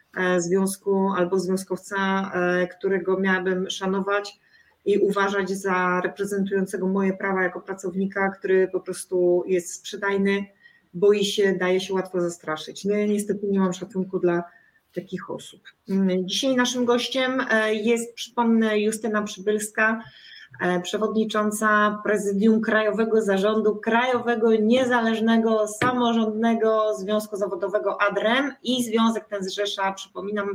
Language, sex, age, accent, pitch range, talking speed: Polish, female, 30-49, native, 190-240 Hz, 110 wpm